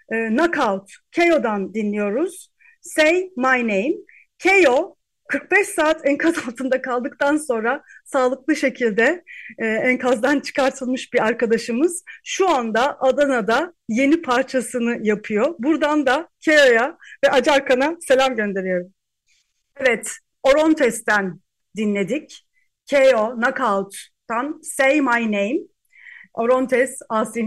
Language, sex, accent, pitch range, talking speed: Turkish, female, native, 215-295 Hz, 95 wpm